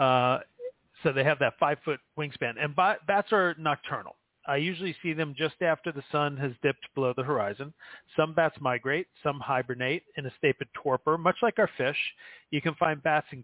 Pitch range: 135-165 Hz